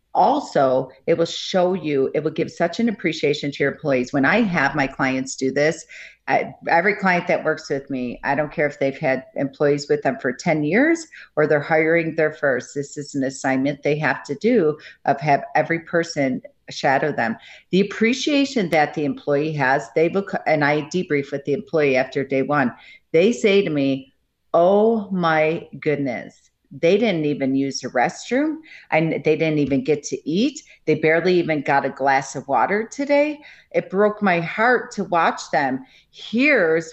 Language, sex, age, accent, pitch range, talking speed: English, female, 50-69, American, 140-180 Hz, 185 wpm